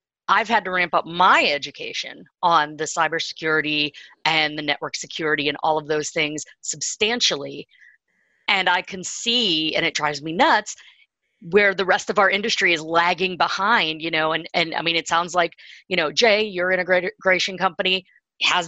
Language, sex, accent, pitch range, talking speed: English, female, American, 170-225 Hz, 175 wpm